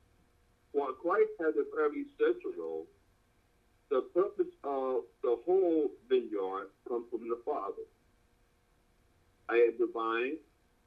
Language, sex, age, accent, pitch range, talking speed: English, male, 50-69, American, 330-420 Hz, 110 wpm